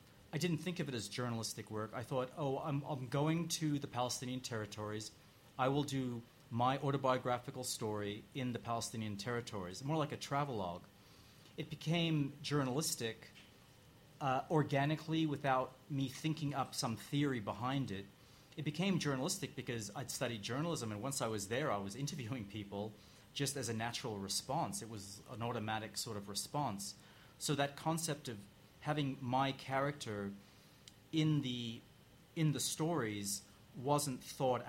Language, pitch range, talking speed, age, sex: English, 110-145 Hz, 150 wpm, 30-49, male